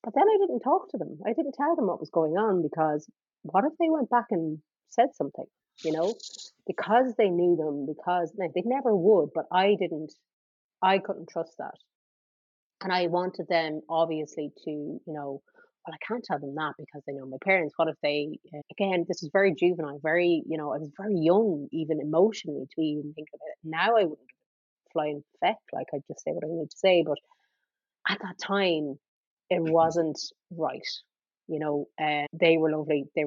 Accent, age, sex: Irish, 30-49, female